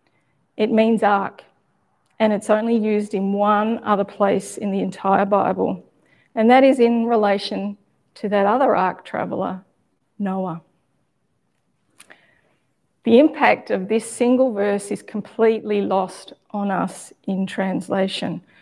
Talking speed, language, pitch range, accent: 125 wpm, English, 200-235 Hz, Australian